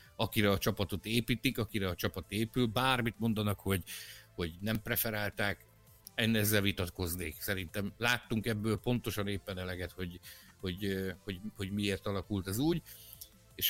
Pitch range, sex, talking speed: 95-130 Hz, male, 145 wpm